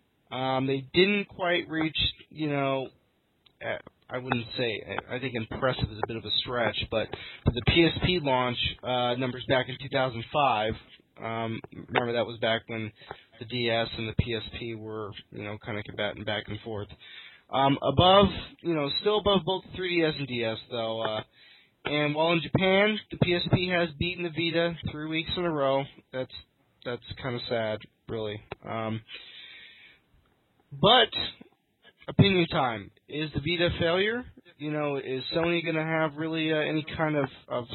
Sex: male